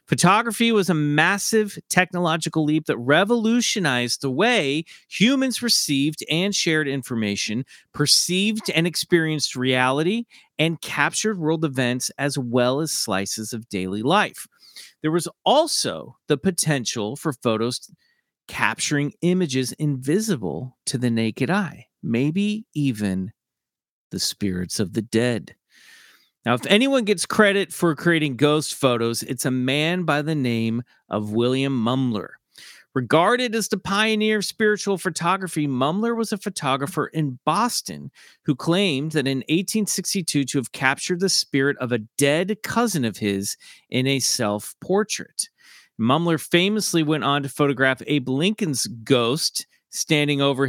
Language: English